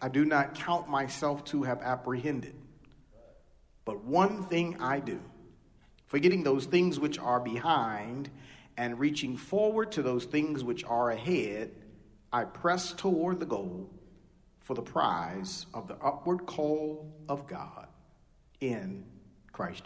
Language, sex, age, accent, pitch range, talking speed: English, male, 50-69, American, 115-145 Hz, 135 wpm